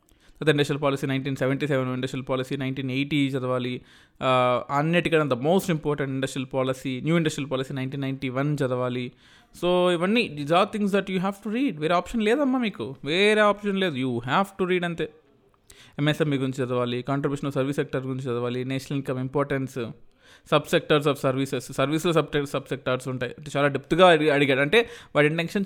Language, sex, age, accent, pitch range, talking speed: Telugu, male, 20-39, native, 135-175 Hz, 170 wpm